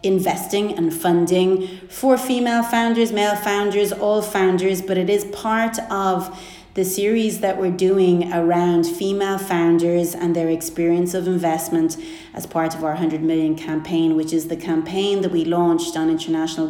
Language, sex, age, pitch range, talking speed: English, female, 30-49, 165-195 Hz, 160 wpm